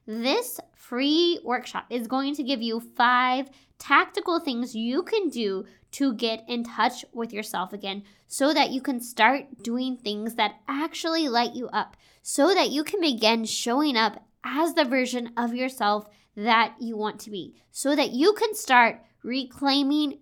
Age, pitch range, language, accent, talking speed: 20-39, 220-270 Hz, English, American, 165 wpm